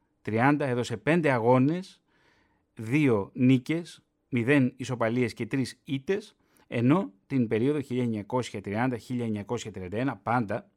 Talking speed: 85 wpm